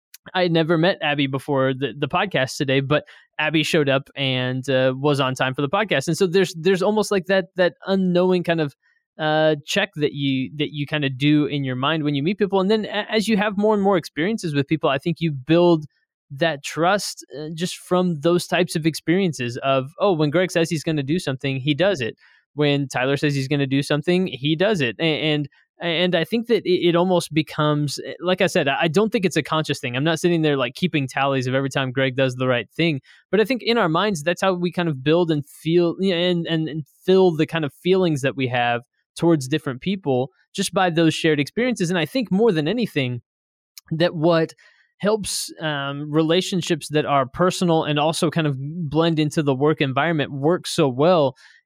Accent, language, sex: American, English, male